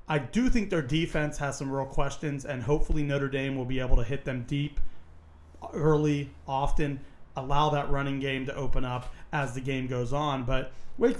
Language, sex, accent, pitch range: English, male, American, 130-155 Hz